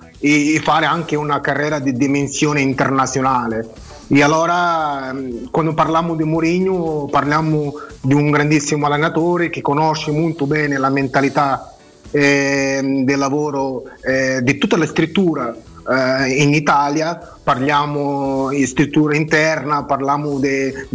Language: Italian